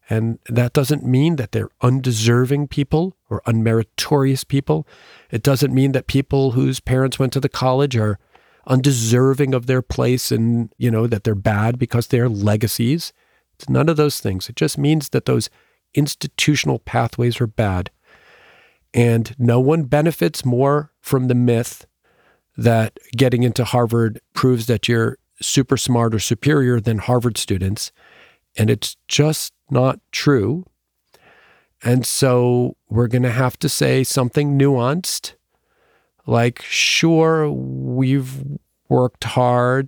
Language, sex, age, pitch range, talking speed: English, male, 40-59, 115-135 Hz, 140 wpm